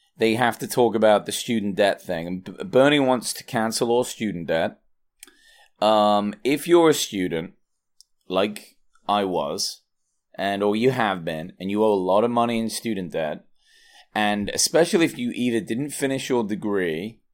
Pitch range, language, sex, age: 105-140 Hz, English, male, 30-49